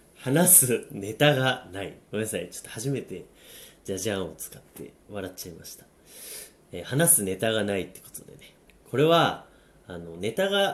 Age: 30-49